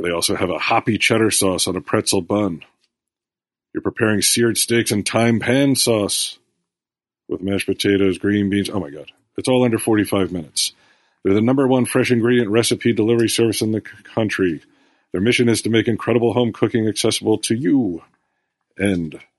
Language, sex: English, male